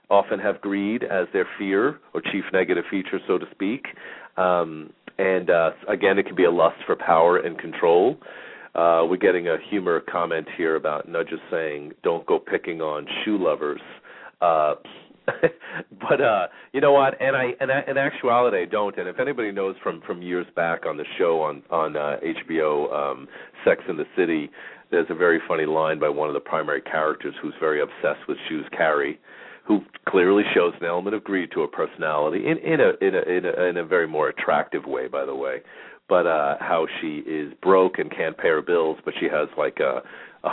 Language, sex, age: English, male, 40-59